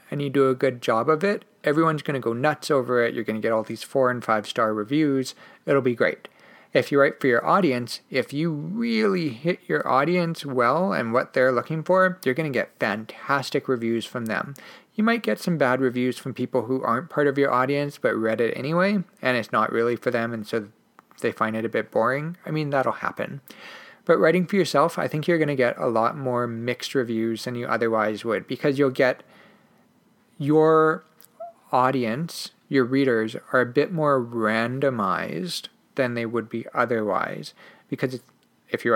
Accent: American